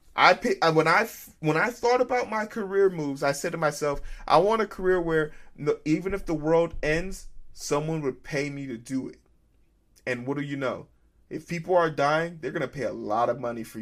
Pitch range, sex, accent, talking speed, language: 110-165 Hz, male, American, 220 wpm, English